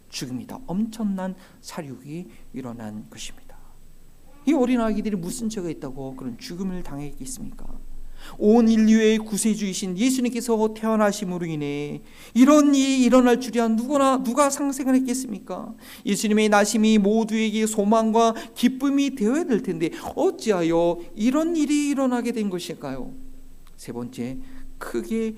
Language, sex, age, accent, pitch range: Korean, male, 50-69, native, 170-225 Hz